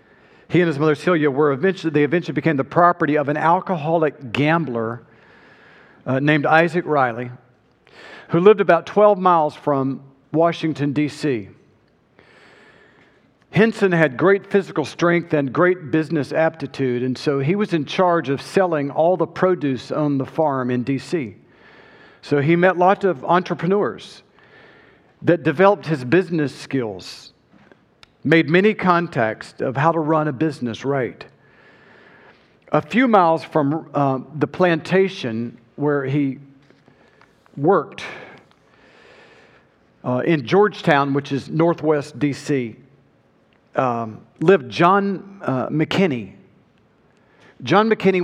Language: English